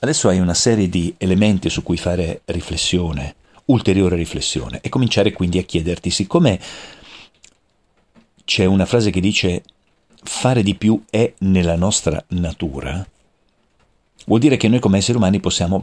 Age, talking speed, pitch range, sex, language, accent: 50-69, 145 wpm, 85-110 Hz, male, Italian, native